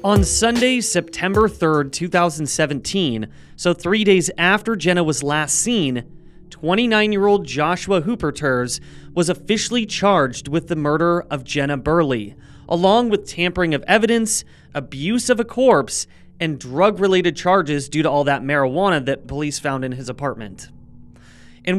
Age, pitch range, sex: 30-49, 140-190 Hz, male